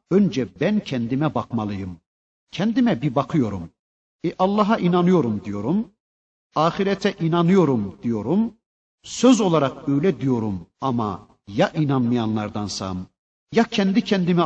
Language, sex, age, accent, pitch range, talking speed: Turkish, male, 50-69, native, 115-180 Hz, 100 wpm